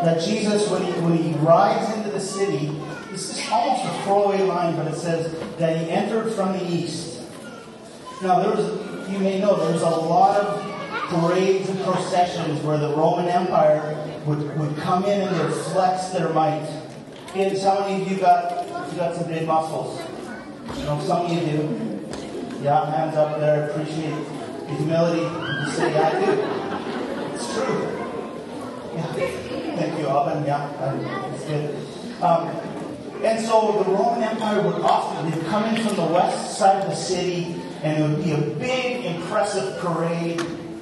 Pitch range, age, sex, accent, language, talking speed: 155-190 Hz, 20-39, female, American, English, 160 wpm